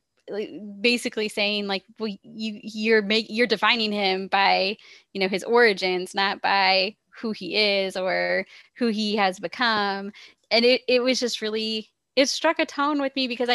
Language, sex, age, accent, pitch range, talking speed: English, female, 20-39, American, 205-255 Hz, 170 wpm